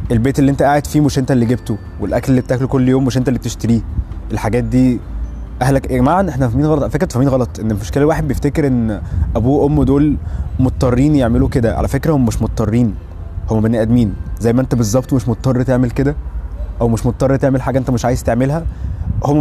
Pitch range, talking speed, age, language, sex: 100-130 Hz, 205 wpm, 20-39, Arabic, male